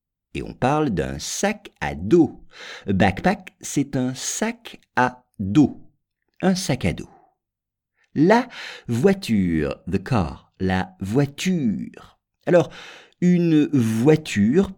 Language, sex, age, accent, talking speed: English, male, 50-69, French, 105 wpm